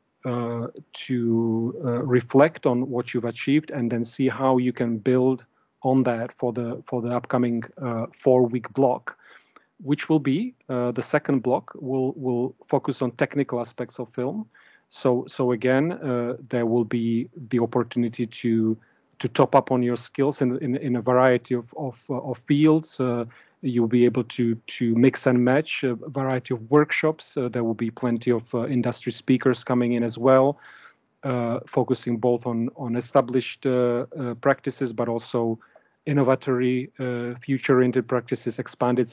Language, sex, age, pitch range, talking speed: English, male, 40-59, 120-135 Hz, 165 wpm